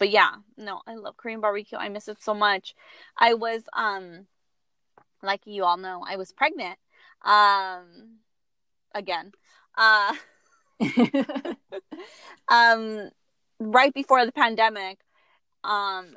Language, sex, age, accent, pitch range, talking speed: English, female, 20-39, American, 195-250 Hz, 115 wpm